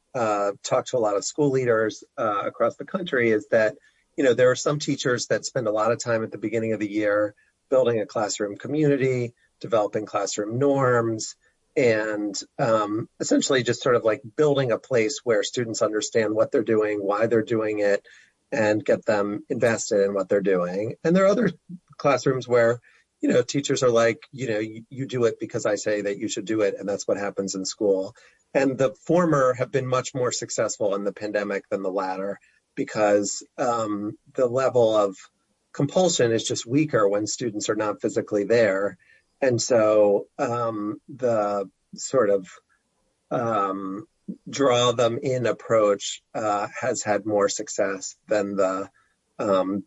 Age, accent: 40-59, American